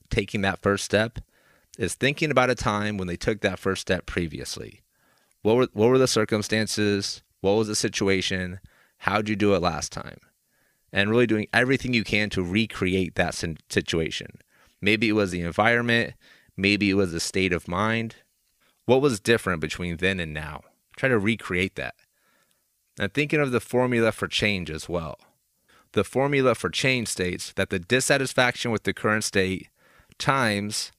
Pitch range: 95-115 Hz